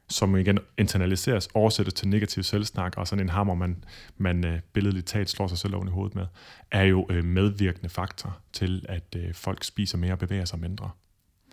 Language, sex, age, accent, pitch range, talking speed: Danish, male, 30-49, native, 90-105 Hz, 180 wpm